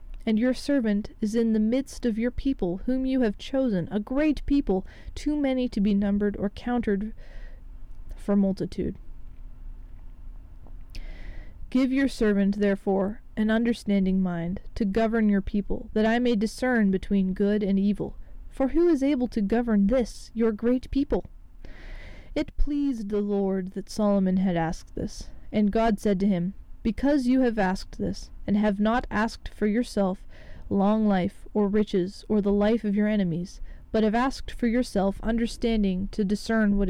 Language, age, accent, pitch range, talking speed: English, 20-39, American, 195-230 Hz, 160 wpm